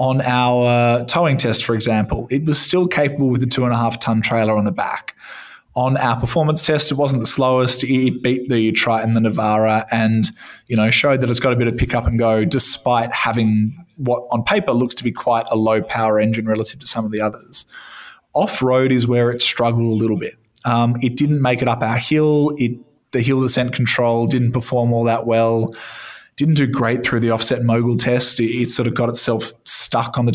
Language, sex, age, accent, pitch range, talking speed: English, male, 20-39, Australian, 115-130 Hz, 205 wpm